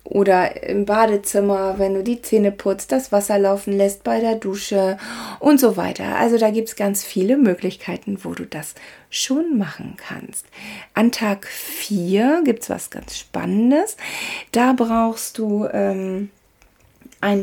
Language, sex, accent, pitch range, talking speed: German, female, German, 195-245 Hz, 150 wpm